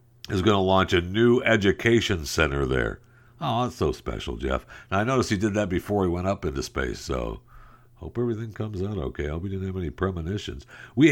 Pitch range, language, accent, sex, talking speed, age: 75-105 Hz, English, American, male, 215 wpm, 60-79